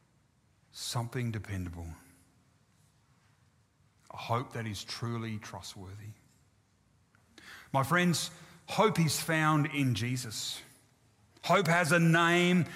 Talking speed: 90 wpm